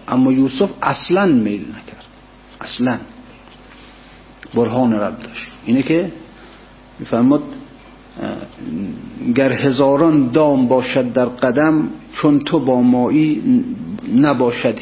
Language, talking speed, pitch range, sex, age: Persian, 90 wpm, 125-160 Hz, male, 50-69